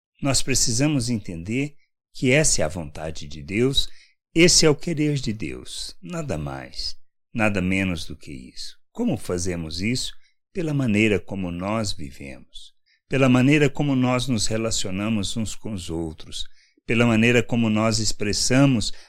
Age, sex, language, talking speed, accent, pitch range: 60-79, male, Portuguese, 145 wpm, Brazilian, 90-130 Hz